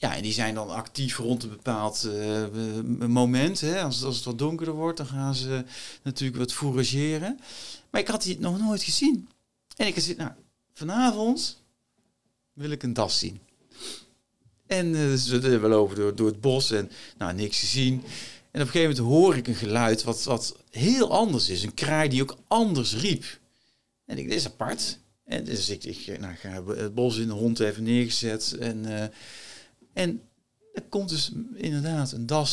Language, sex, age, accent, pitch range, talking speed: Dutch, male, 40-59, Dutch, 115-150 Hz, 190 wpm